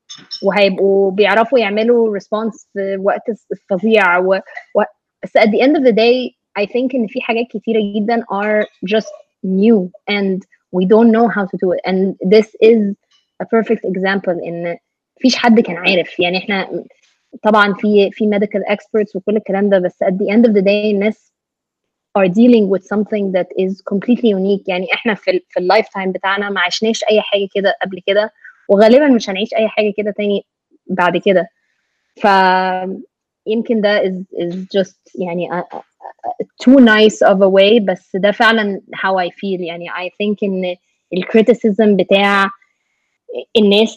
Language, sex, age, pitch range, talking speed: Arabic, female, 20-39, 195-225 Hz, 165 wpm